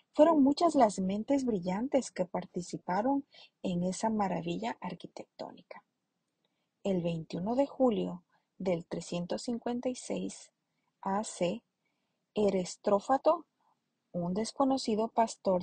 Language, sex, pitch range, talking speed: Spanish, female, 185-260 Hz, 85 wpm